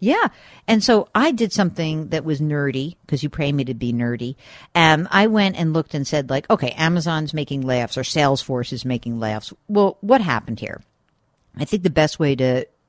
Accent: American